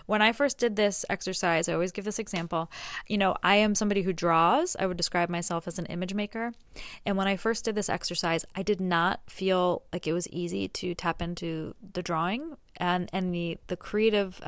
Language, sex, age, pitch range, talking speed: English, female, 20-39, 170-210 Hz, 210 wpm